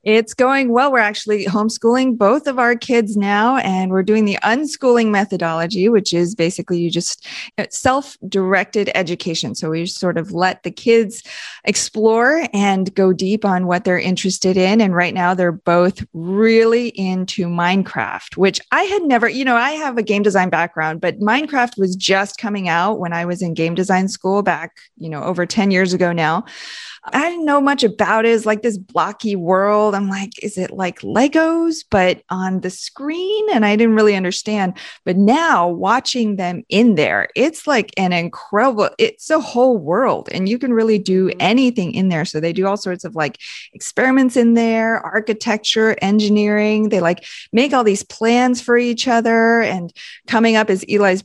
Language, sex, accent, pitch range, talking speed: English, female, American, 185-230 Hz, 185 wpm